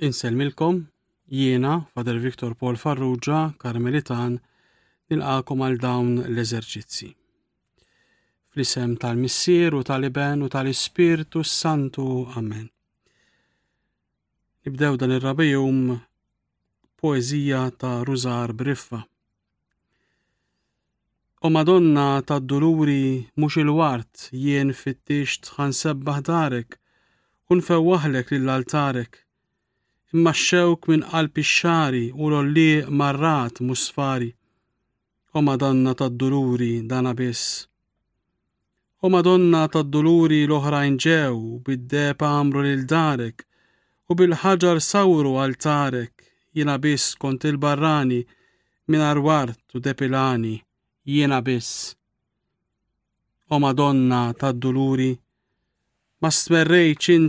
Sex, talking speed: male, 75 wpm